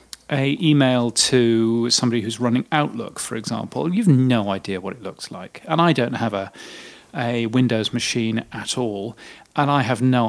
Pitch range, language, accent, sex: 120-140 Hz, English, British, male